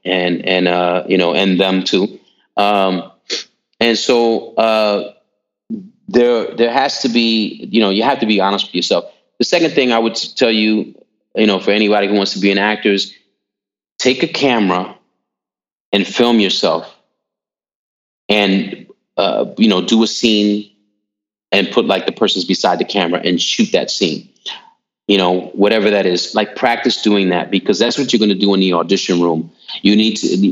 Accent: American